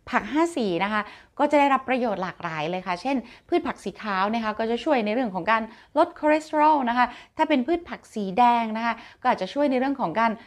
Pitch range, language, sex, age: 200-265 Hz, Thai, female, 20-39